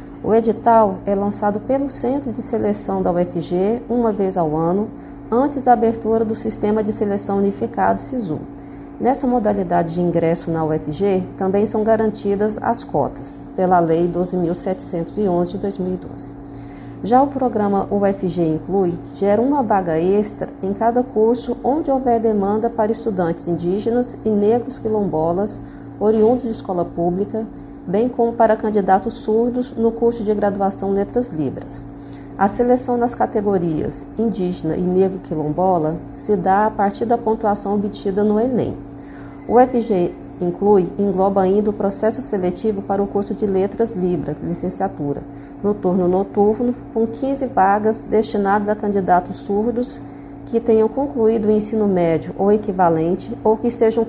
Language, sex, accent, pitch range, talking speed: Portuguese, female, Brazilian, 180-225 Hz, 140 wpm